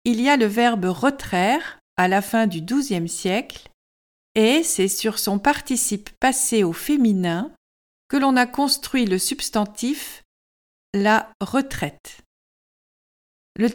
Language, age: French, 50-69